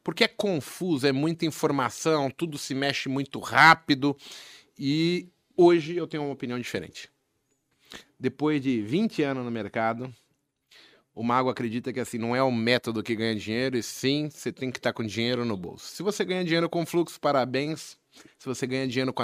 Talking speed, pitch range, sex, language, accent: 180 wpm, 120-145 Hz, male, Portuguese, Brazilian